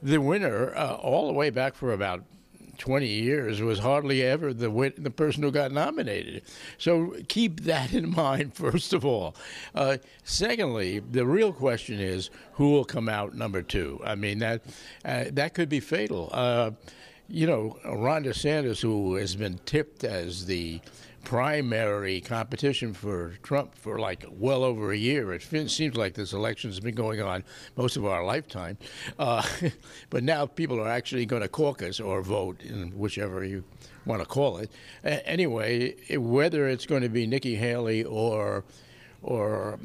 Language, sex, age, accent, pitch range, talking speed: English, male, 60-79, American, 110-145 Hz, 170 wpm